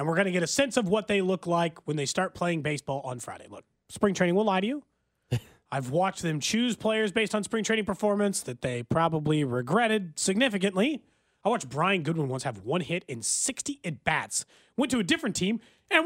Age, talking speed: 30-49, 220 wpm